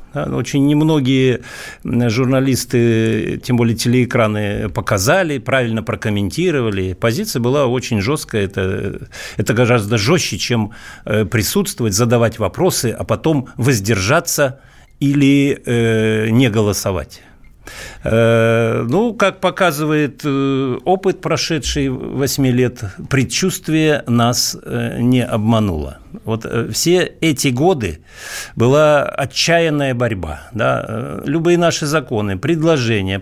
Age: 50-69